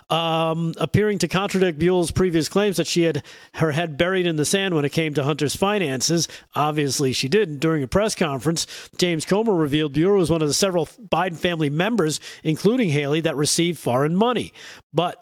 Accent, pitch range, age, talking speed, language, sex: American, 150-185 Hz, 40-59, 190 wpm, English, male